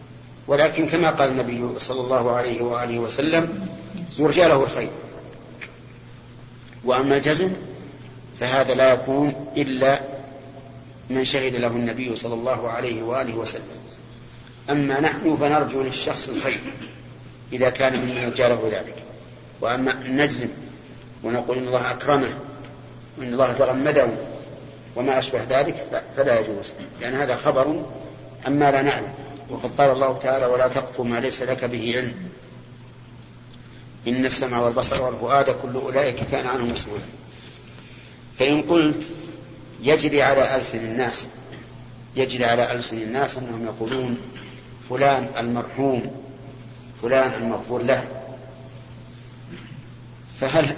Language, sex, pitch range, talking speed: Arabic, male, 120-135 Hz, 110 wpm